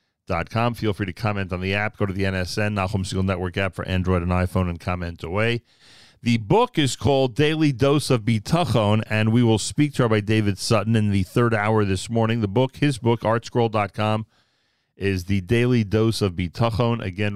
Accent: American